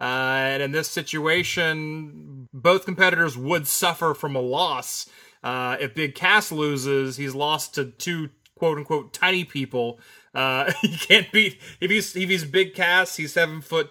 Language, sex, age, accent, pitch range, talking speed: English, male, 30-49, American, 135-175 Hz, 160 wpm